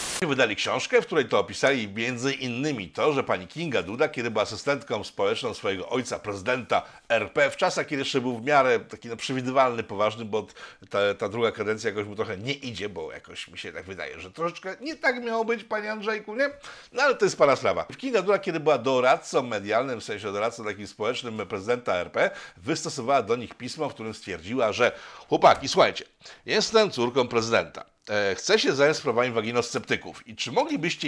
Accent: native